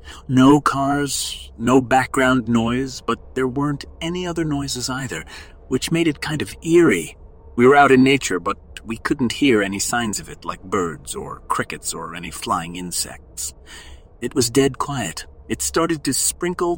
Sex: male